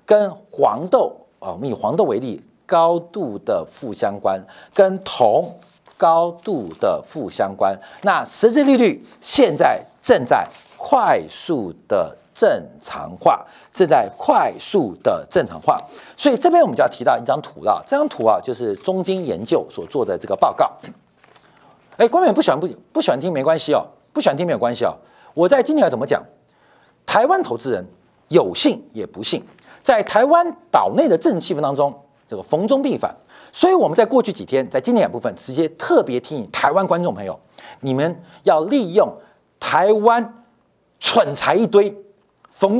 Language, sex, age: Chinese, male, 50-69